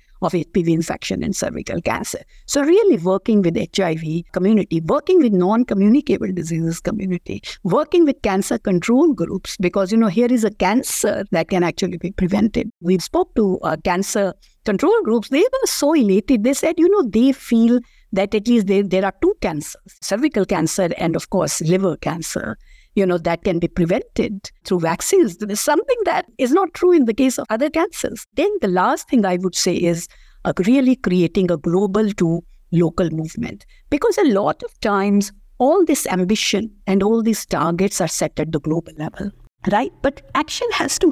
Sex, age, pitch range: female, 60-79, 180-255 Hz